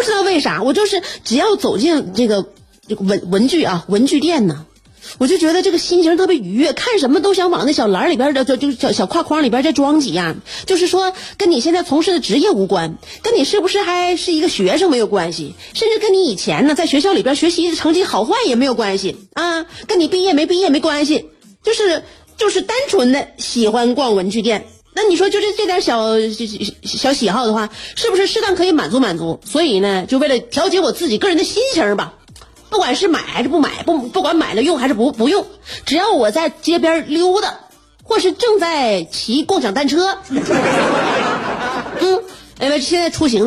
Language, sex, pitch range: Chinese, female, 230-365 Hz